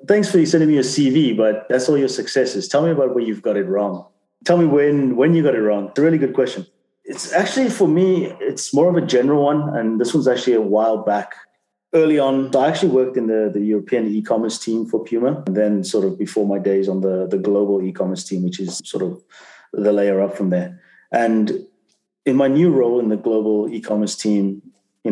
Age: 30-49